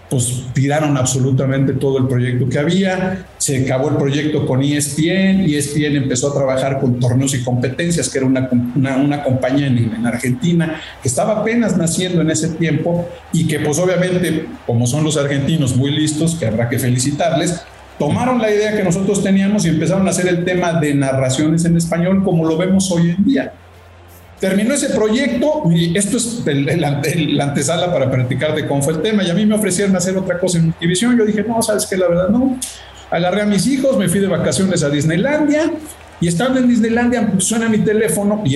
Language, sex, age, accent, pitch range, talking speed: English, male, 50-69, Mexican, 135-185 Hz, 200 wpm